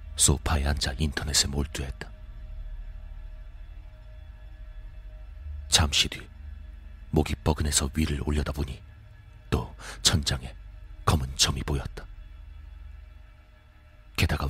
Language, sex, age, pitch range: Korean, male, 40-59, 75-85 Hz